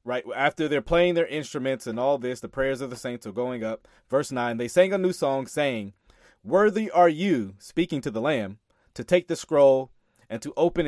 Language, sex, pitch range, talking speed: English, male, 120-170 Hz, 215 wpm